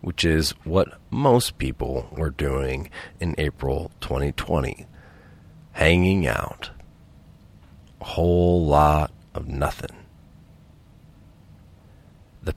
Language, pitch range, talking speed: English, 75-90 Hz, 85 wpm